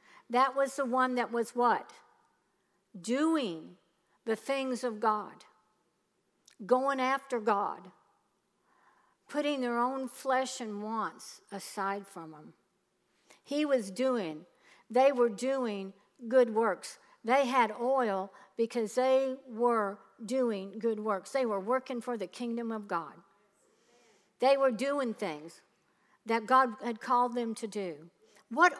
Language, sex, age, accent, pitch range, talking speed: English, female, 60-79, American, 195-250 Hz, 125 wpm